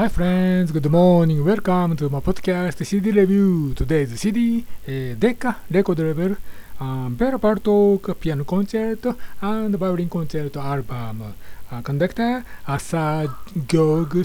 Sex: male